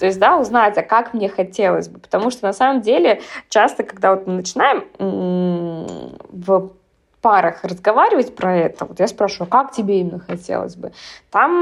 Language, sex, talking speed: Russian, female, 170 wpm